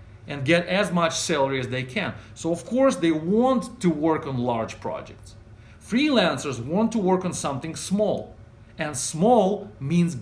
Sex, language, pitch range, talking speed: male, English, 120-185 Hz, 165 wpm